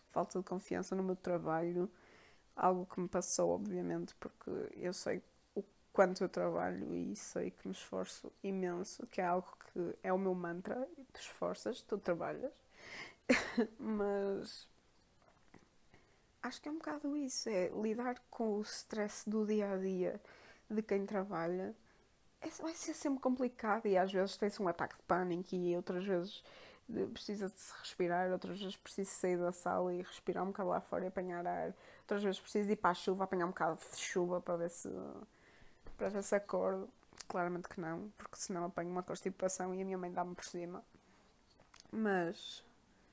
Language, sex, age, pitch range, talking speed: Portuguese, female, 20-39, 180-210 Hz, 170 wpm